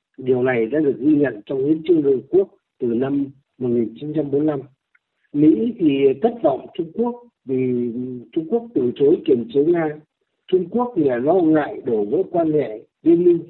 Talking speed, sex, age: 180 wpm, male, 60-79